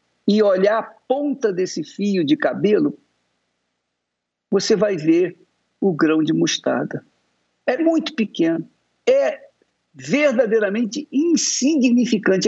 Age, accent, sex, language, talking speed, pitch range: 50-69, Brazilian, male, Portuguese, 100 wpm, 195-290 Hz